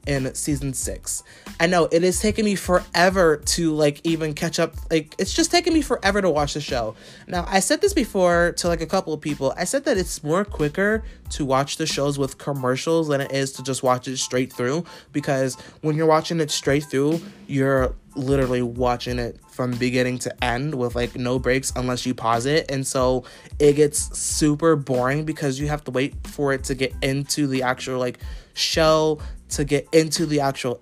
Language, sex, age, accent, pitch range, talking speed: English, male, 20-39, American, 130-160 Hz, 205 wpm